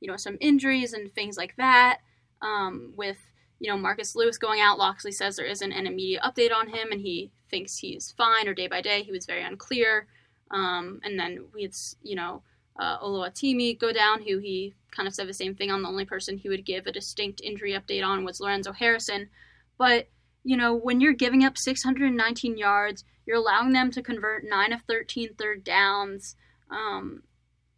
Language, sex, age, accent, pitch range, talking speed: English, female, 20-39, American, 200-240 Hz, 200 wpm